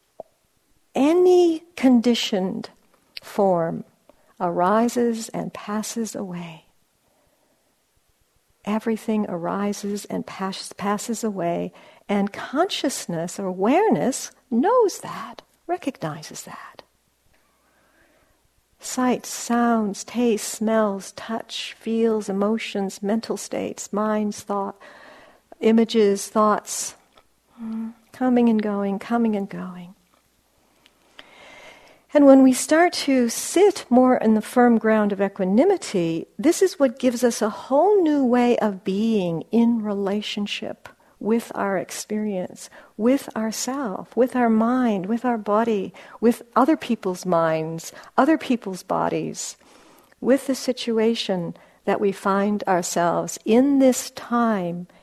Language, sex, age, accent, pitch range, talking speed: English, female, 60-79, American, 200-250 Hz, 100 wpm